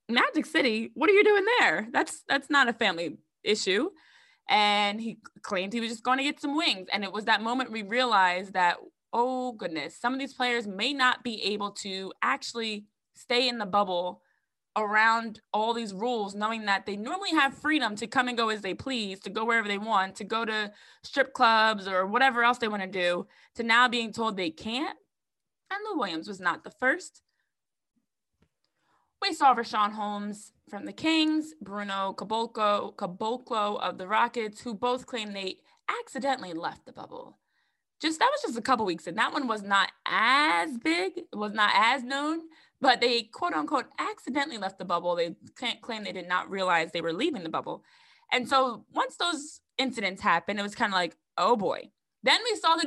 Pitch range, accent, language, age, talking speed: 205-270 Hz, American, English, 20-39, 195 wpm